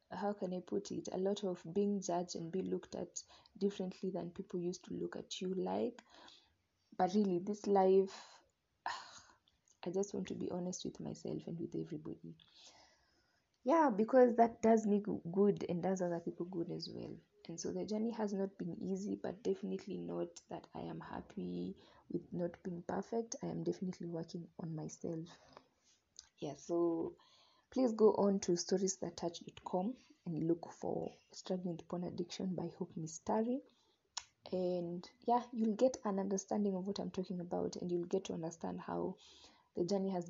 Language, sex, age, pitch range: English, female, 20-39, 175-205 Hz